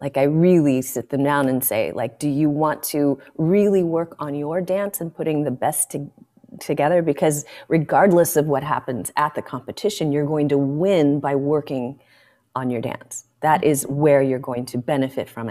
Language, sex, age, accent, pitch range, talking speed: English, female, 30-49, American, 145-185 Hz, 185 wpm